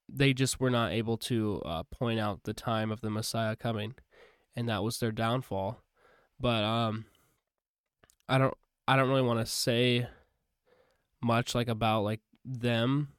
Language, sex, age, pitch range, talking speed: English, male, 10-29, 110-130 Hz, 160 wpm